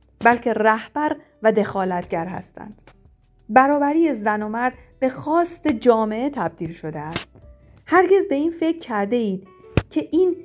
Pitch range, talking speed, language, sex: 200-275 Hz, 130 wpm, Persian, female